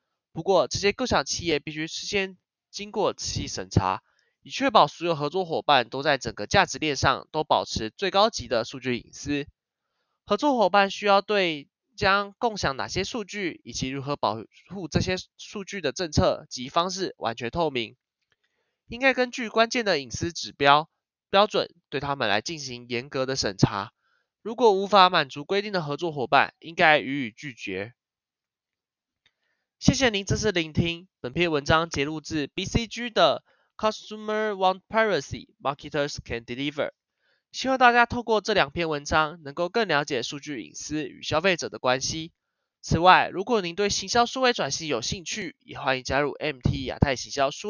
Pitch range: 135-200 Hz